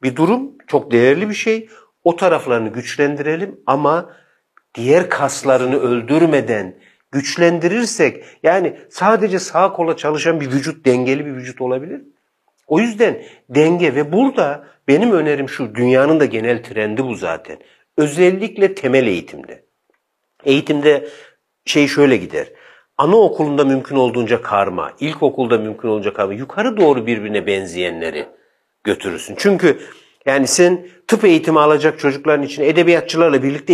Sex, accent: male, native